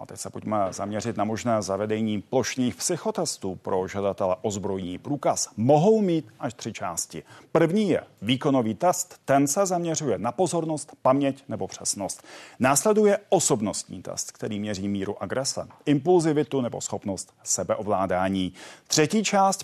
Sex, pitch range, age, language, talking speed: male, 105-160 Hz, 40-59, Czech, 140 wpm